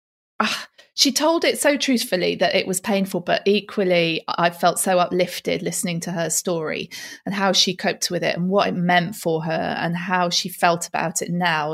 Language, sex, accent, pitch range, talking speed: English, female, British, 175-225 Hz, 200 wpm